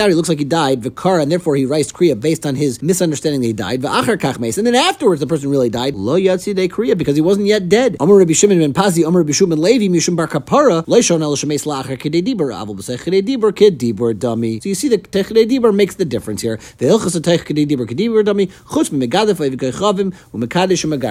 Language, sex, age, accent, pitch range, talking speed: English, male, 40-59, American, 140-190 Hz, 115 wpm